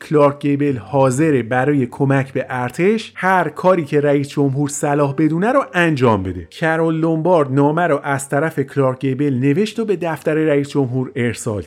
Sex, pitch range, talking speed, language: male, 125-170 Hz, 165 wpm, Persian